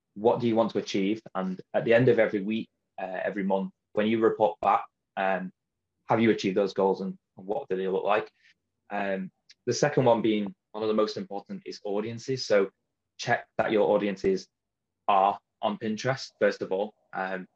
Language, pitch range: English, 95-120 Hz